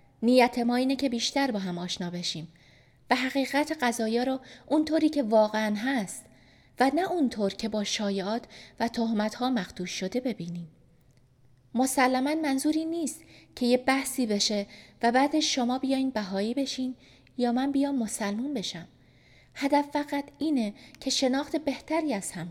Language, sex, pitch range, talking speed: Persian, female, 185-265 Hz, 150 wpm